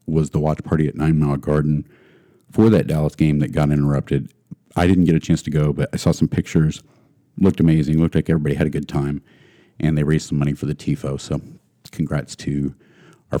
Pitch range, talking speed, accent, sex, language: 75-95 Hz, 215 wpm, American, male, English